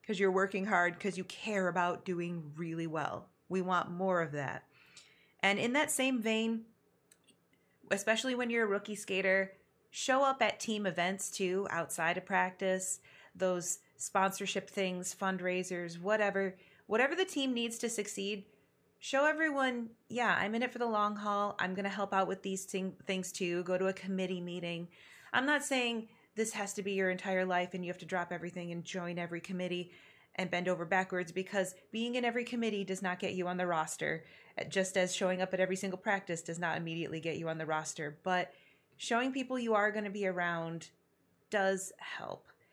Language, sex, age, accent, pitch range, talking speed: English, female, 30-49, American, 180-220 Hz, 190 wpm